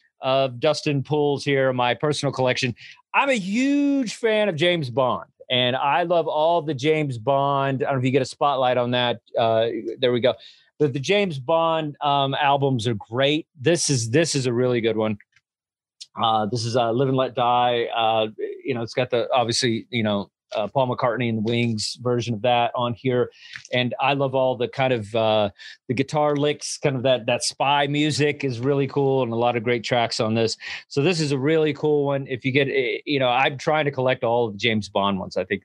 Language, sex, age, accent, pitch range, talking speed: English, male, 40-59, American, 120-150 Hz, 220 wpm